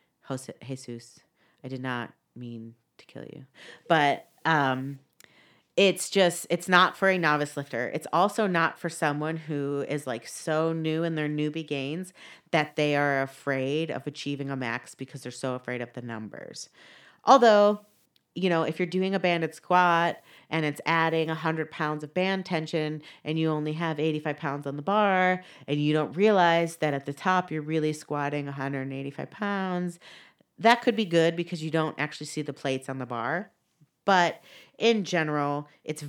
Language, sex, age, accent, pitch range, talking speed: English, female, 30-49, American, 135-165 Hz, 175 wpm